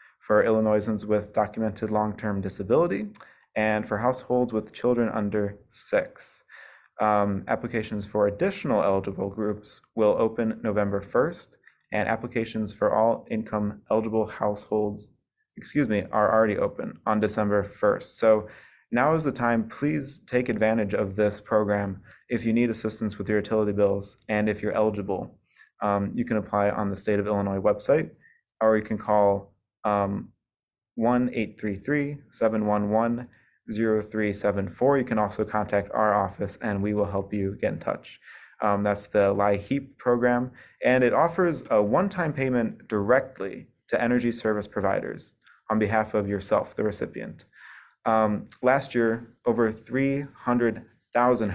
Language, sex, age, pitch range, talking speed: English, male, 20-39, 105-115 Hz, 135 wpm